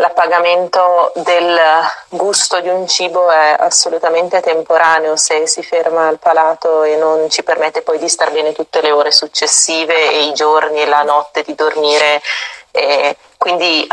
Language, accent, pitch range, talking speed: Italian, native, 150-165 Hz, 150 wpm